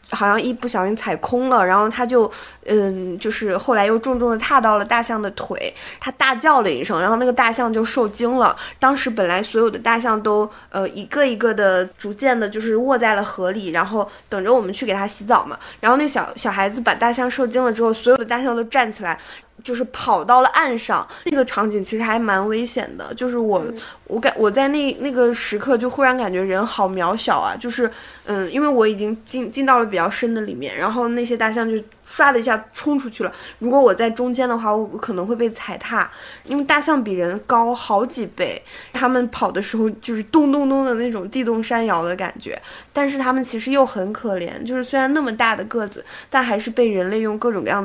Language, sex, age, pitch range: Chinese, female, 20-39, 205-250 Hz